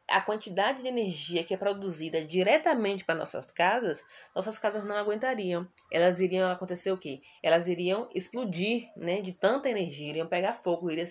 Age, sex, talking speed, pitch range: 20-39, female, 165 wpm, 170-210 Hz